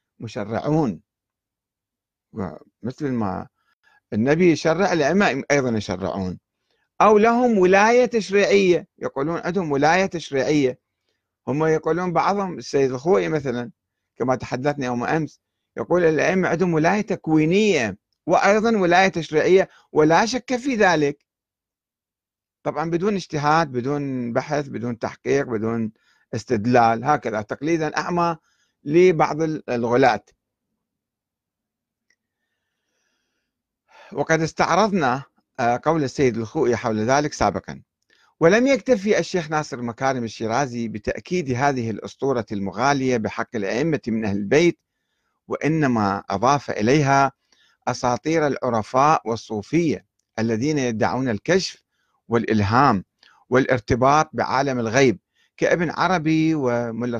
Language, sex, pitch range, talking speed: Arabic, male, 115-165 Hz, 95 wpm